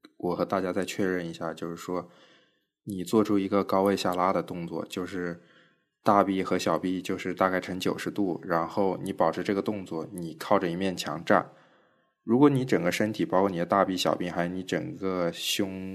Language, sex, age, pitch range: Chinese, male, 20-39, 85-105 Hz